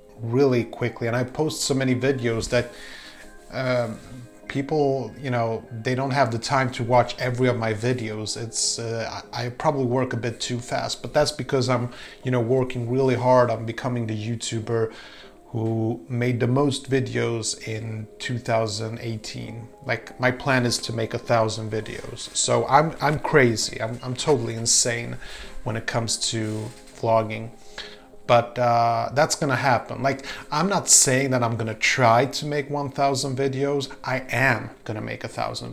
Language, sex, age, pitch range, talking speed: English, male, 30-49, 115-130 Hz, 165 wpm